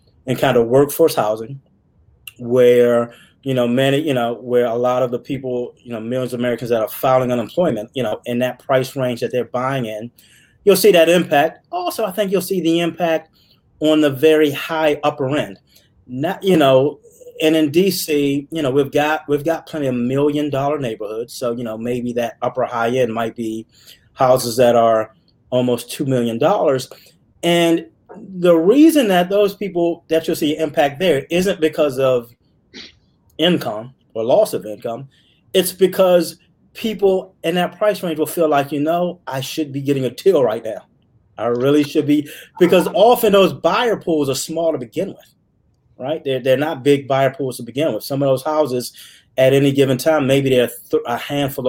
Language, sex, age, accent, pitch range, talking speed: English, male, 30-49, American, 125-165 Hz, 185 wpm